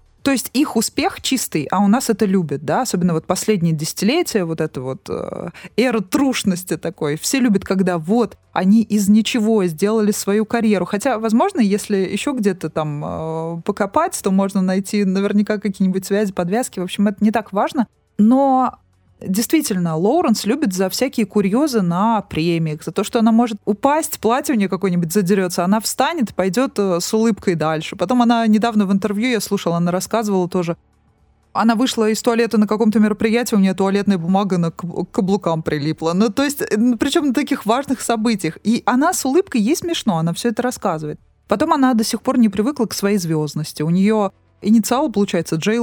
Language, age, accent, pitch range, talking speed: Russian, 20-39, native, 185-240 Hz, 180 wpm